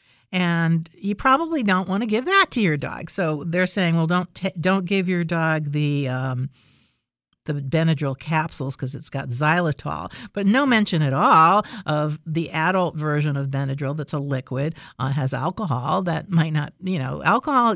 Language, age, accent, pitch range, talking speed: English, 50-69, American, 135-180 Hz, 180 wpm